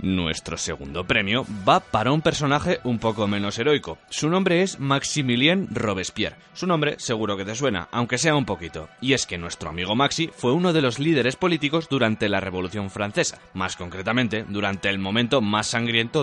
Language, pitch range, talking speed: Spanish, 95-135 Hz, 180 wpm